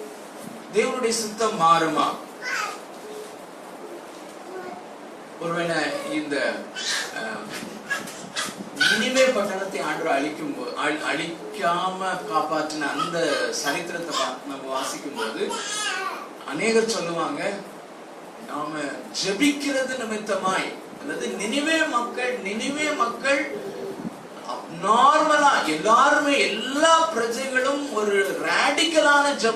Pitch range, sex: 215-285 Hz, male